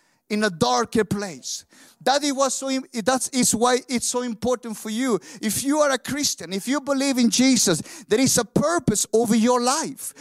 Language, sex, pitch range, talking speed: English, male, 210-270 Hz, 170 wpm